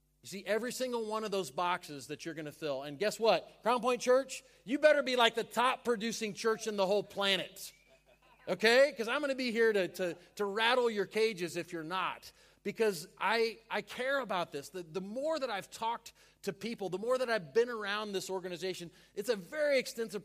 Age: 30-49